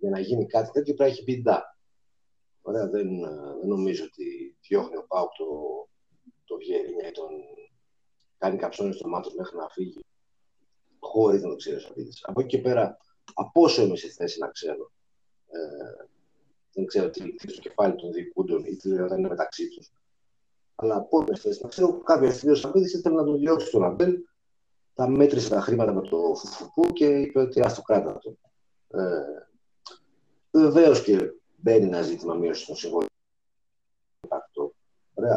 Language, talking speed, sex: Greek, 140 wpm, male